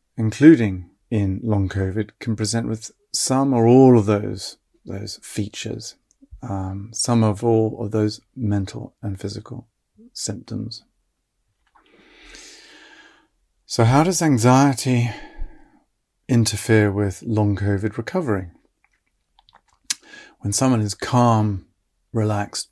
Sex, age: male, 40-59